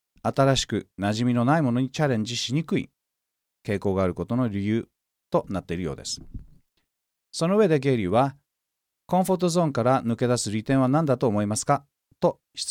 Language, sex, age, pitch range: Japanese, male, 40-59, 110-160 Hz